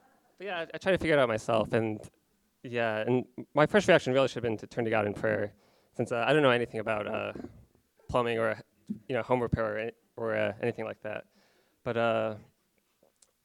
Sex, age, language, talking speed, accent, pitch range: male, 20-39, English, 220 wpm, American, 110-125 Hz